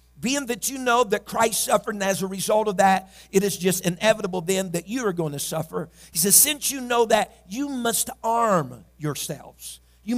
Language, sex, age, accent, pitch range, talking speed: English, male, 50-69, American, 185-235 Hz, 205 wpm